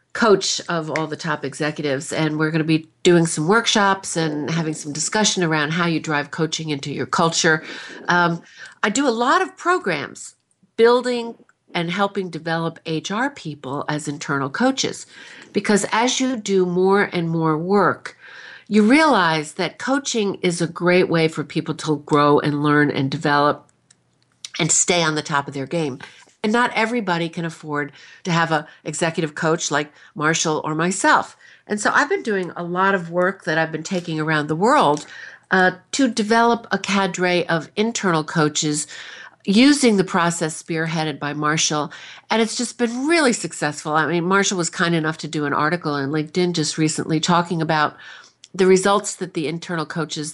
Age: 50-69